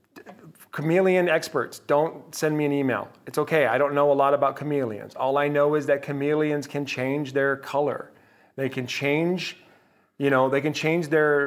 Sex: male